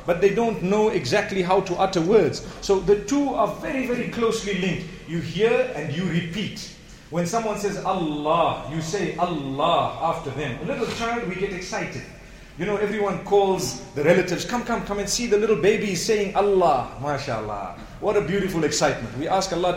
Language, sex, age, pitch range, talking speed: English, male, 40-59, 150-200 Hz, 185 wpm